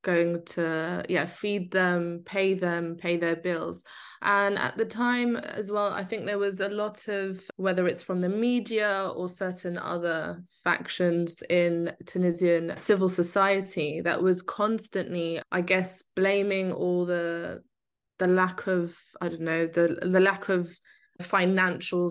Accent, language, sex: British, English, female